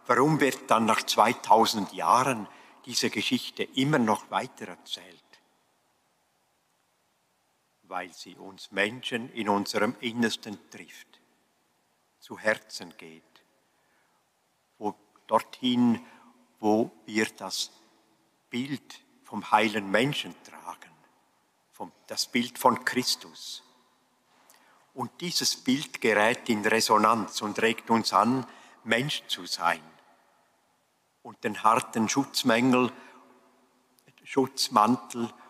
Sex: male